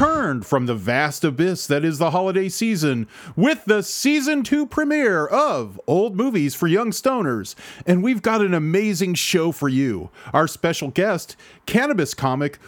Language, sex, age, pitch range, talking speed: English, male, 40-59, 140-220 Hz, 155 wpm